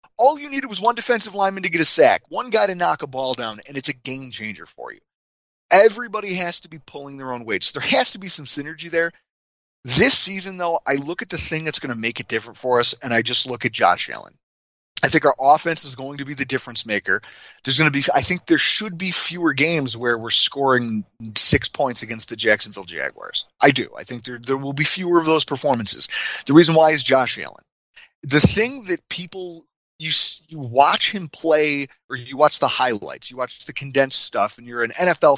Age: 30-49